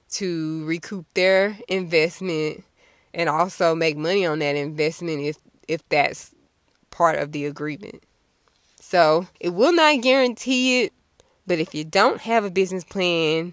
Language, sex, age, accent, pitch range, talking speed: English, female, 20-39, American, 155-195 Hz, 140 wpm